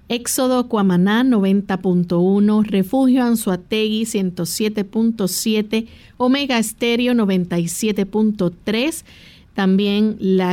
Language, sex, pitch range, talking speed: Spanish, female, 190-230 Hz, 65 wpm